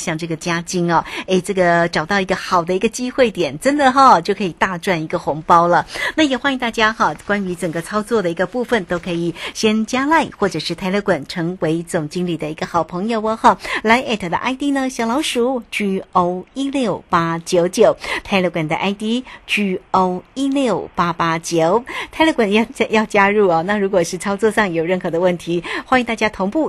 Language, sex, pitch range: Chinese, female, 180-235 Hz